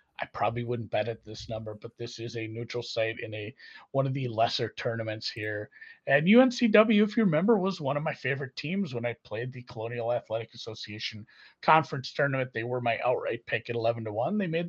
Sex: male